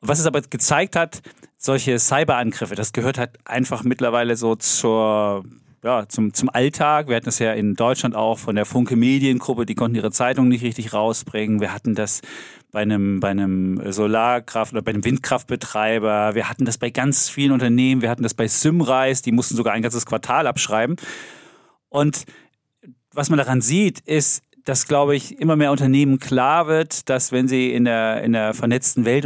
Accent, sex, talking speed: German, male, 180 wpm